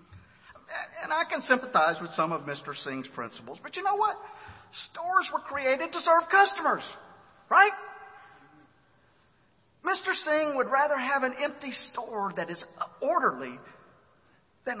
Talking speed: 135 wpm